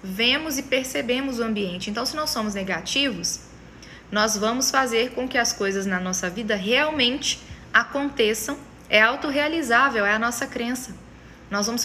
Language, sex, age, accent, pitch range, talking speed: Portuguese, female, 20-39, Brazilian, 220-270 Hz, 150 wpm